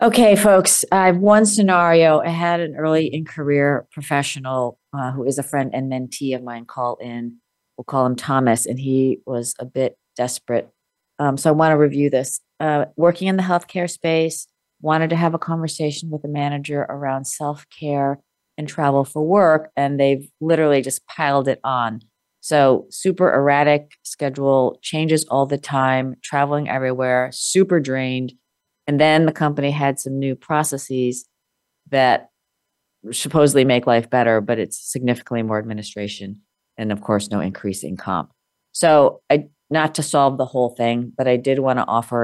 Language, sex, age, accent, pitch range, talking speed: English, female, 40-59, American, 125-150 Hz, 170 wpm